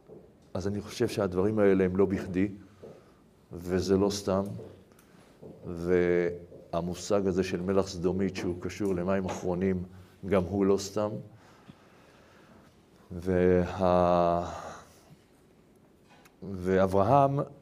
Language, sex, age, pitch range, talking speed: Hebrew, male, 50-69, 95-110 Hz, 90 wpm